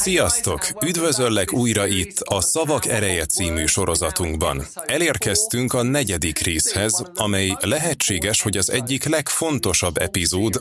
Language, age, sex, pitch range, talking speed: Hungarian, 30-49, male, 90-125 Hz, 115 wpm